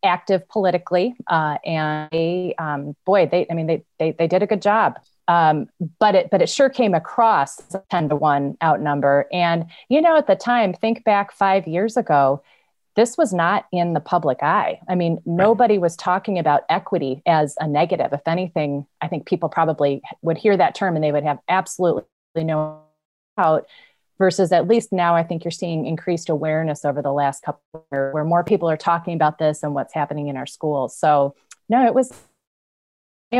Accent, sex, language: American, female, English